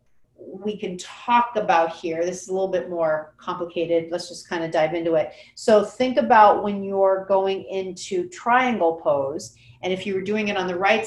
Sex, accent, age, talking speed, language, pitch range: female, American, 40-59, 200 wpm, English, 170-210 Hz